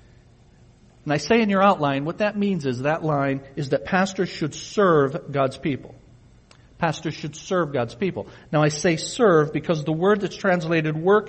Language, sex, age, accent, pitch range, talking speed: English, male, 50-69, American, 145-190 Hz, 180 wpm